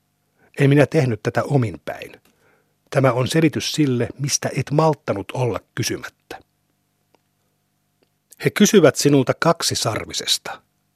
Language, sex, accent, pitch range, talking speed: Finnish, male, native, 120-145 Hz, 105 wpm